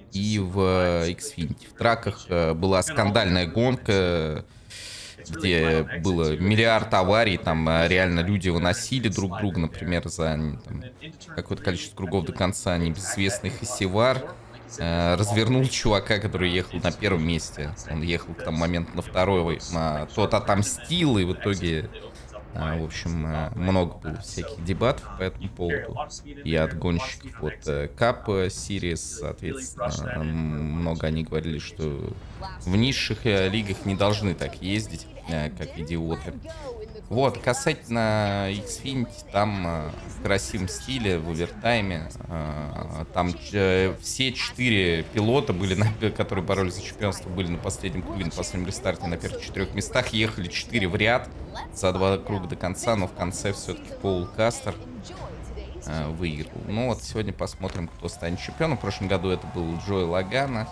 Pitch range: 85-105 Hz